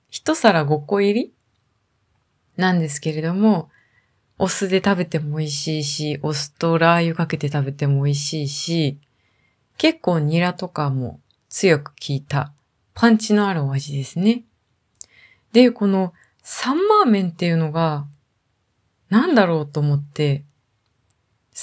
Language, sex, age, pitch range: Japanese, female, 20-39, 150-240 Hz